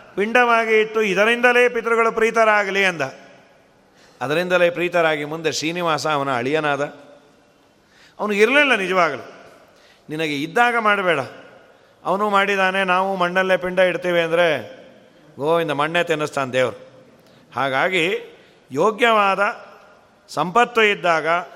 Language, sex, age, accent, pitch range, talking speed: Kannada, male, 40-59, native, 165-220 Hz, 90 wpm